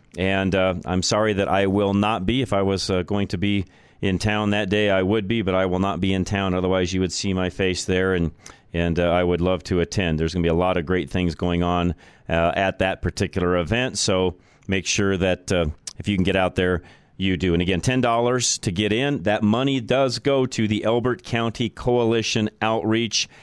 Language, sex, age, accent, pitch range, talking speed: English, male, 40-59, American, 90-105 Hz, 230 wpm